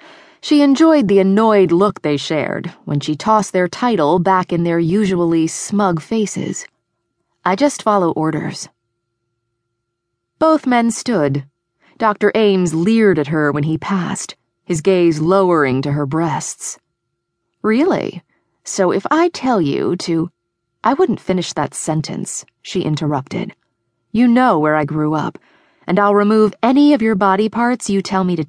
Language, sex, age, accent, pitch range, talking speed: English, female, 30-49, American, 155-220 Hz, 150 wpm